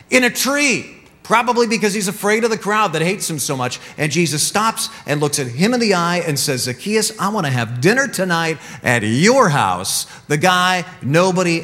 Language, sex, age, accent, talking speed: English, male, 50-69, American, 205 wpm